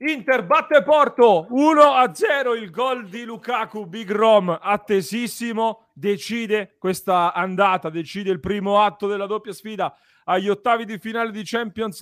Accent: native